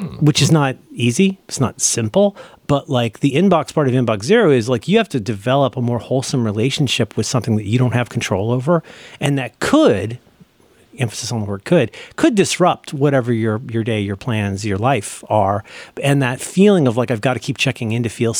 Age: 40-59